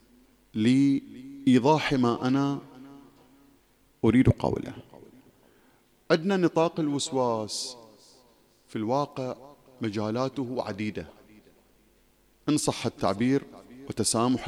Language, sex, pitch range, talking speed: English, male, 105-150 Hz, 60 wpm